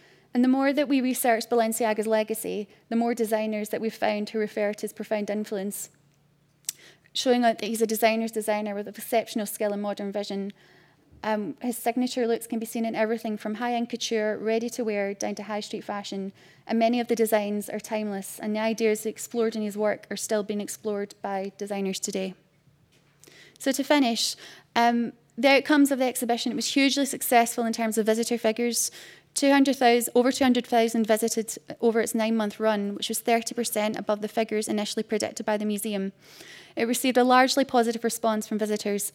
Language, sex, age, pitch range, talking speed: French, female, 20-39, 205-230 Hz, 180 wpm